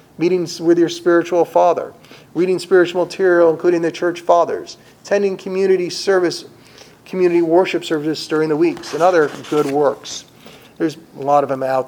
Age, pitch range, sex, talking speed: 40-59, 145-180 Hz, male, 155 wpm